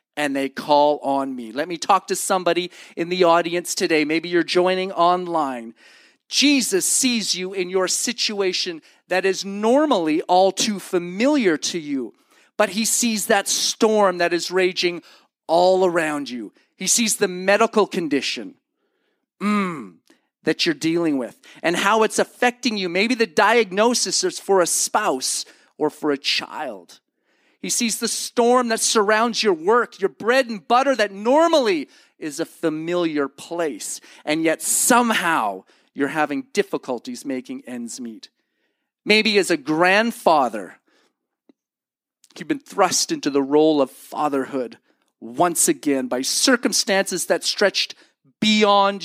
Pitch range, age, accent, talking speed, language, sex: 170-250 Hz, 40-59, American, 140 wpm, English, male